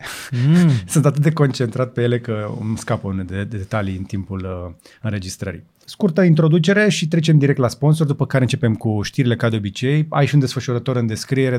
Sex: male